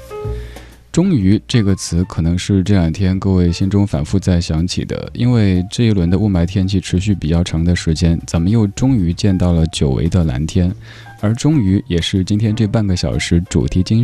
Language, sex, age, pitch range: Chinese, male, 20-39, 85-110 Hz